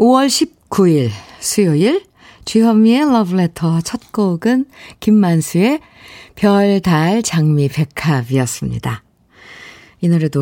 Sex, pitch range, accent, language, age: female, 150-215 Hz, native, Korean, 50-69